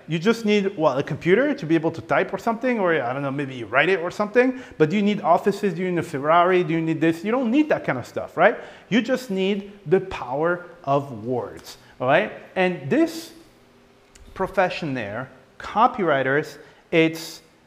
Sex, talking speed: male, 205 wpm